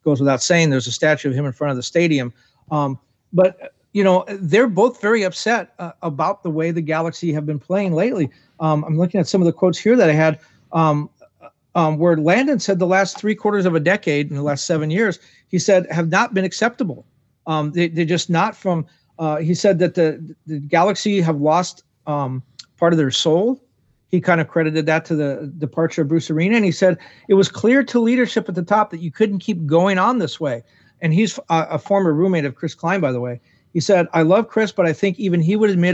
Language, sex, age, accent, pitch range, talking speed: English, male, 40-59, American, 155-190 Hz, 230 wpm